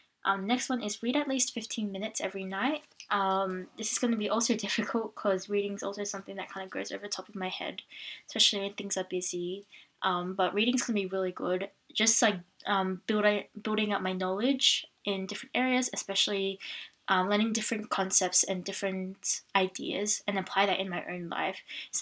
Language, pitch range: English, 190-220 Hz